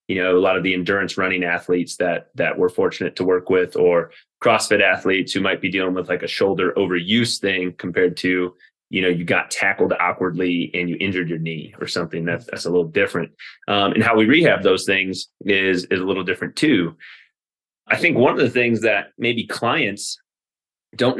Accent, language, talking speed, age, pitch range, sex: American, English, 205 wpm, 30-49, 90-110 Hz, male